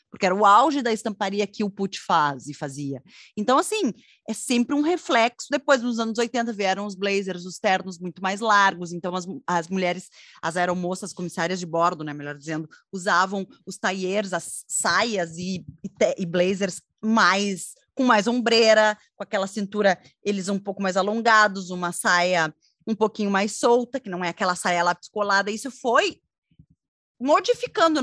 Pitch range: 190-250 Hz